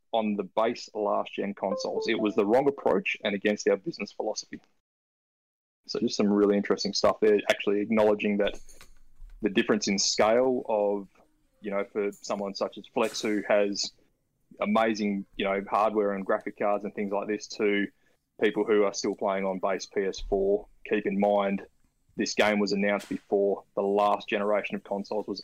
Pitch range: 100-110 Hz